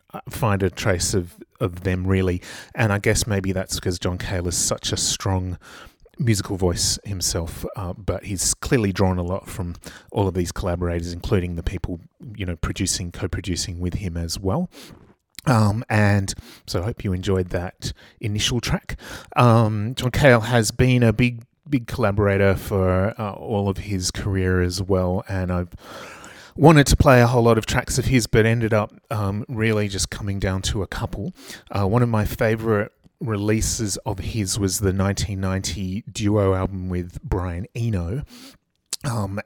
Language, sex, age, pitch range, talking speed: English, male, 30-49, 95-110 Hz, 170 wpm